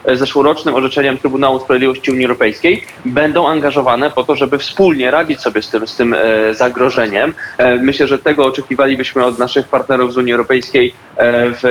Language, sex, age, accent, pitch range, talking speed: Polish, male, 20-39, native, 130-155 Hz, 150 wpm